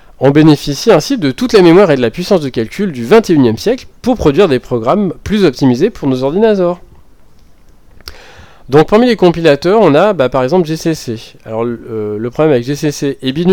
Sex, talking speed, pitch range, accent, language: male, 195 wpm, 115-155 Hz, French, French